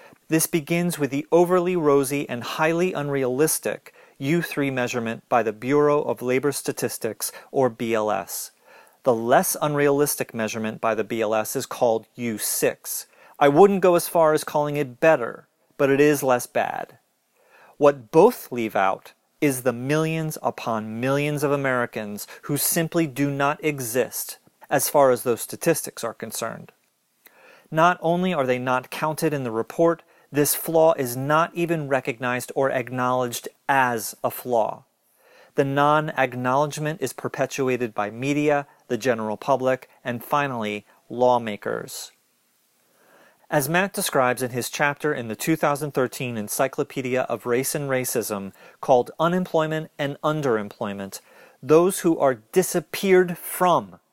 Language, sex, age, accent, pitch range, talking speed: English, male, 40-59, American, 125-155 Hz, 135 wpm